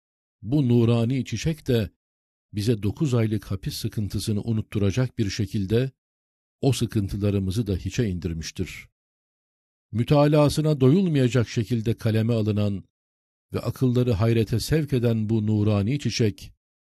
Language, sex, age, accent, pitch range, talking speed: Turkish, male, 50-69, native, 100-125 Hz, 105 wpm